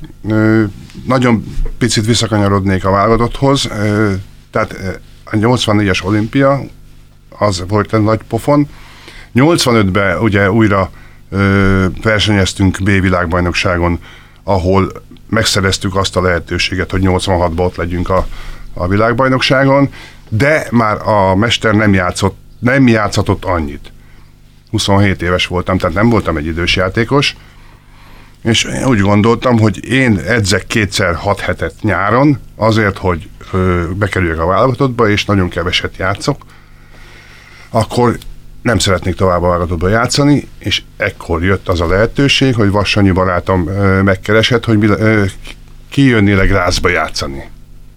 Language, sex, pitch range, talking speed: Hungarian, male, 95-120 Hz, 115 wpm